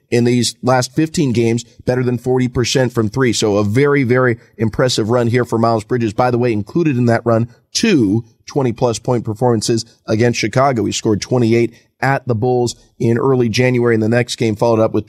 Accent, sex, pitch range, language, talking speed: American, male, 115-130 Hz, English, 195 wpm